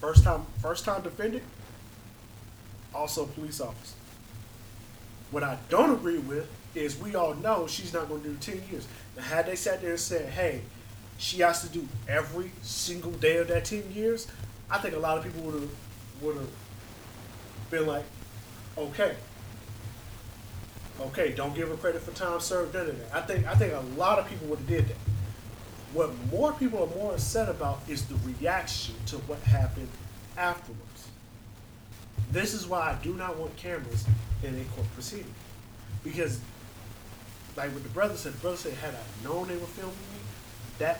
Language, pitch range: English, 110-155 Hz